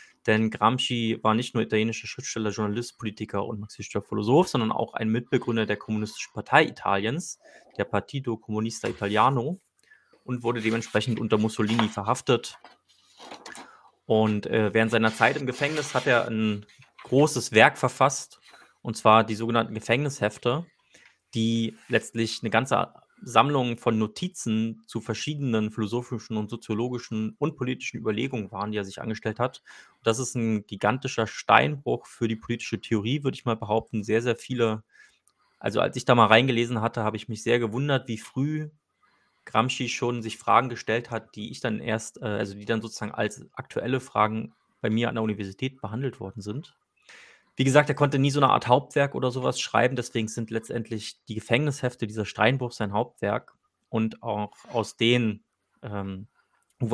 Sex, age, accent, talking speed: male, 30-49, German, 160 wpm